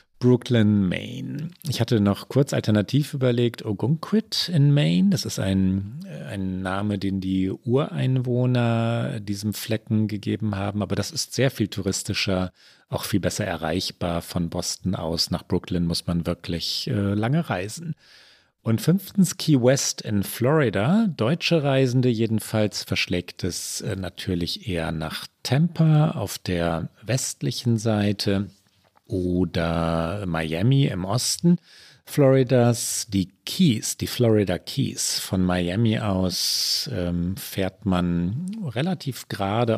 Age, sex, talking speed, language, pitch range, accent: 40-59, male, 125 wpm, German, 95-135 Hz, German